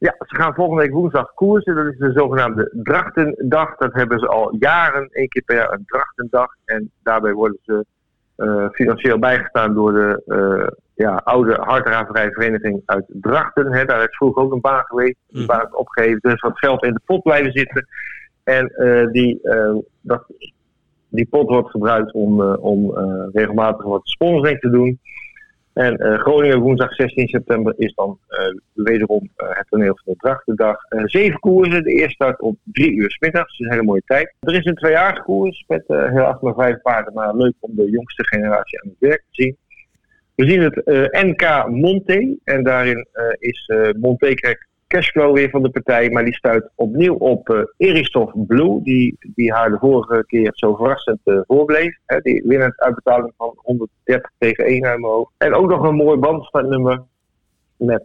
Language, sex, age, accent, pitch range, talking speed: Dutch, male, 50-69, Dutch, 110-140 Hz, 185 wpm